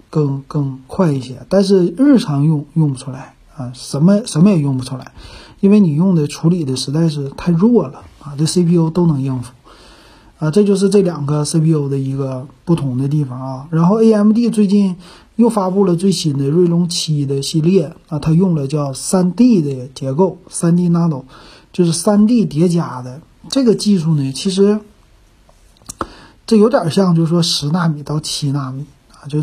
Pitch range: 140-190 Hz